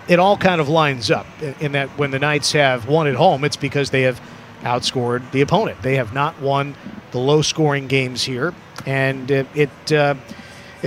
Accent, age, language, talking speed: American, 50-69, English, 190 wpm